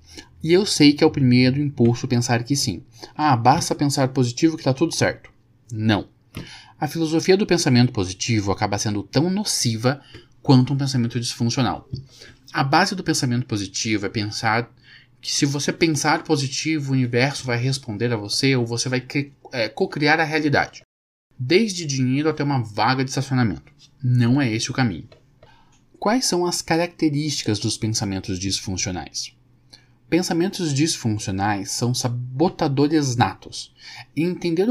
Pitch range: 120-155 Hz